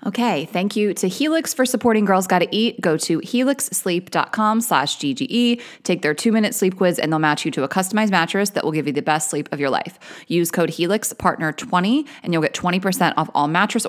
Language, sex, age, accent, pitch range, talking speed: English, female, 20-39, American, 155-215 Hz, 205 wpm